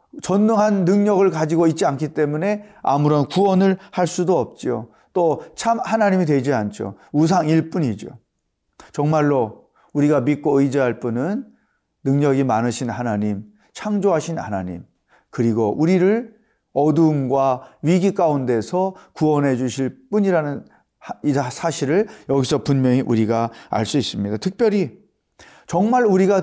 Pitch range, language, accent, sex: 130-180 Hz, Korean, native, male